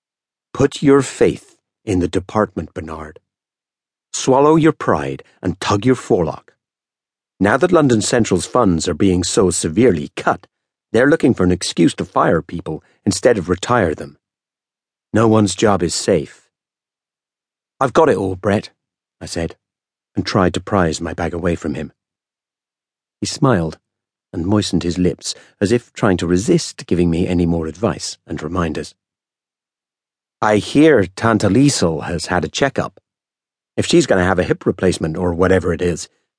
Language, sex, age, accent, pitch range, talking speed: English, male, 50-69, British, 85-110 Hz, 155 wpm